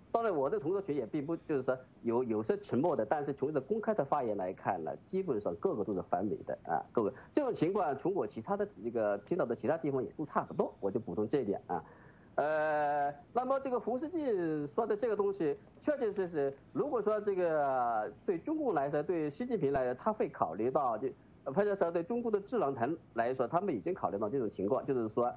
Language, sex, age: English, male, 40-59